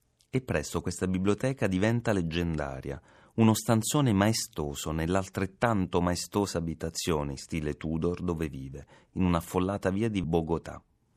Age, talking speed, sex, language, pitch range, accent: 30-49, 120 wpm, male, Italian, 75-115 Hz, native